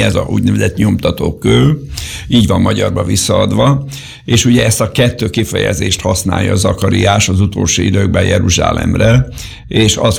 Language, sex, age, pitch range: Hungarian, male, 60-79, 95-120 Hz